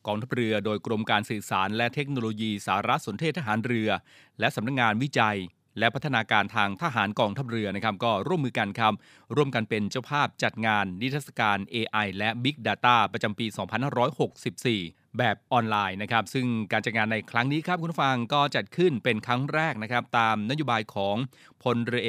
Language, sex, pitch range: Thai, male, 110-135 Hz